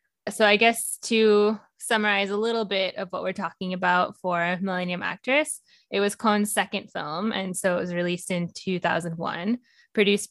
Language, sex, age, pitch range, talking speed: English, female, 10-29, 175-200 Hz, 170 wpm